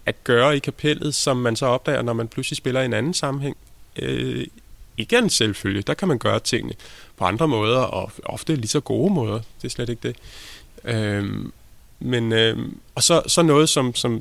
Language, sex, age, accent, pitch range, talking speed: Danish, male, 20-39, native, 120-145 Hz, 200 wpm